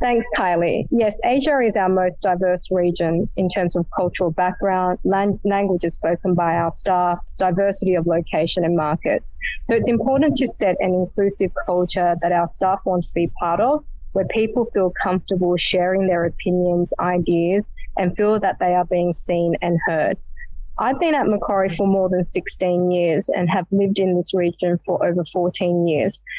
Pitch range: 175-195 Hz